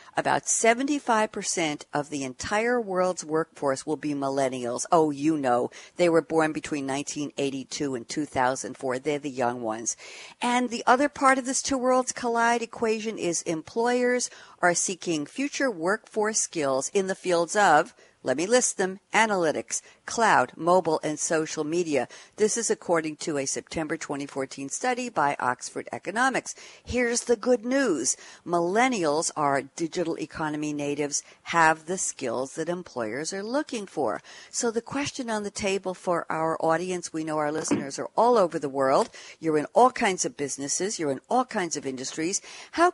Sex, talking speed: female, 160 wpm